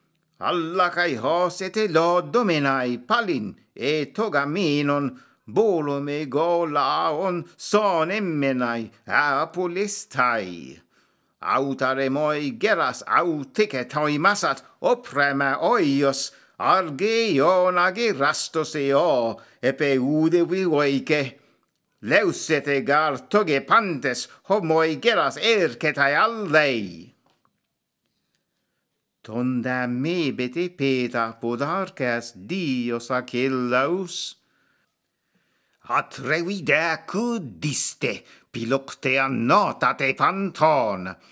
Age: 60-79